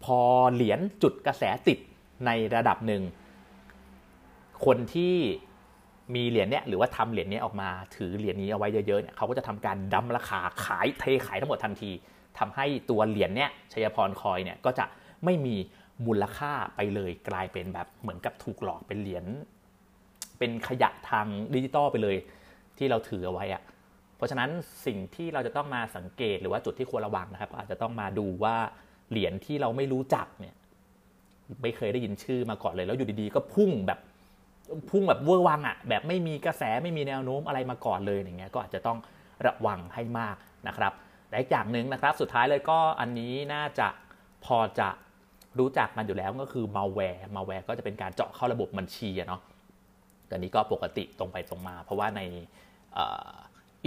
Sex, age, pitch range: male, 30-49, 95-130 Hz